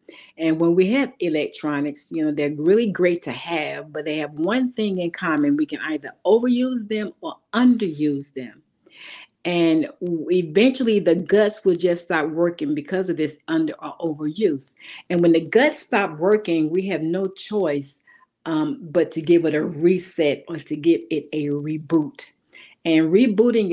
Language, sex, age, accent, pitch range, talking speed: English, female, 50-69, American, 150-190 Hz, 165 wpm